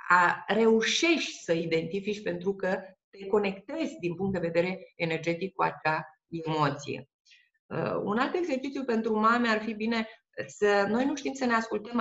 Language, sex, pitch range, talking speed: Romanian, female, 170-225 Hz, 155 wpm